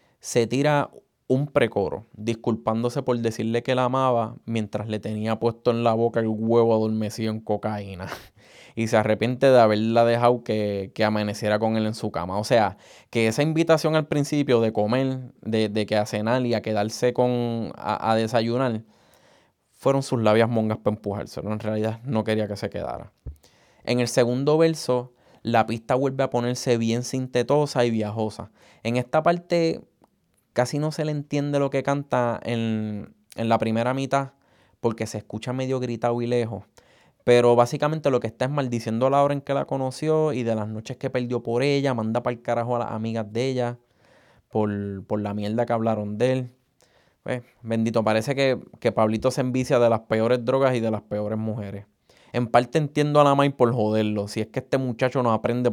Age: 20-39